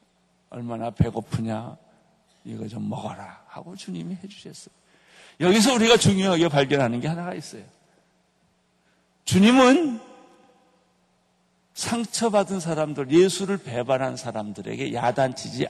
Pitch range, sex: 155-210 Hz, male